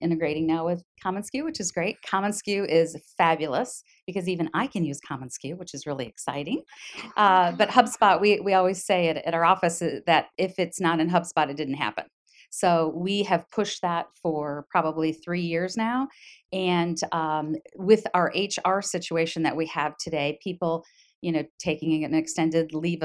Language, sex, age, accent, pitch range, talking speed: English, female, 40-59, American, 160-185 Hz, 180 wpm